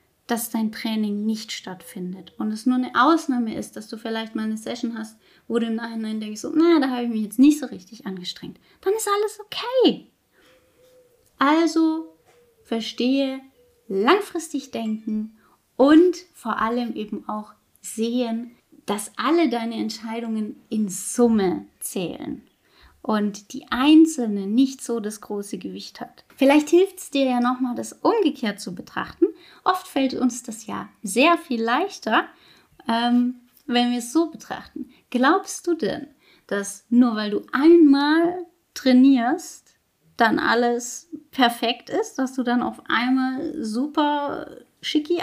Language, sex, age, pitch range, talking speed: German, female, 20-39, 225-315 Hz, 140 wpm